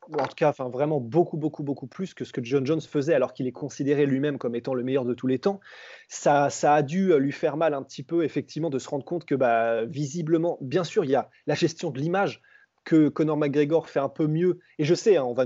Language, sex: French, male